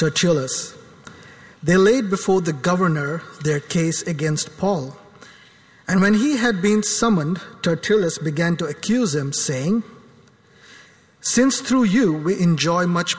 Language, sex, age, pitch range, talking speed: English, male, 50-69, 150-210 Hz, 125 wpm